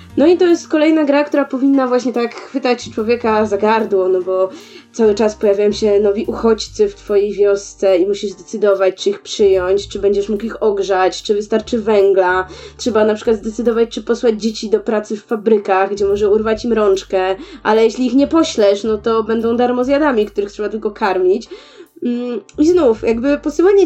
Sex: female